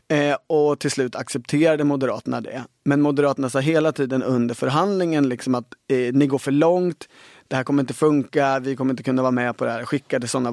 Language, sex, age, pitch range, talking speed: Swedish, male, 30-49, 125-150 Hz, 205 wpm